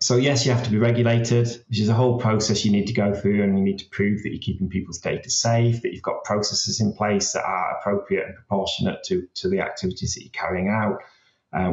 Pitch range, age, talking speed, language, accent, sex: 100-120 Hz, 30-49, 245 wpm, English, British, male